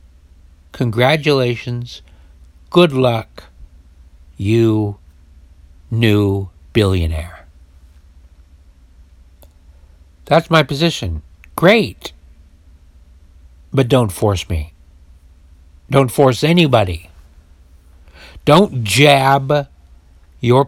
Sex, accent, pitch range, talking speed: male, American, 75-115 Hz, 60 wpm